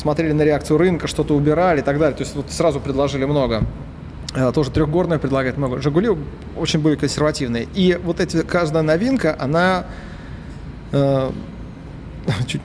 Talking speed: 140 wpm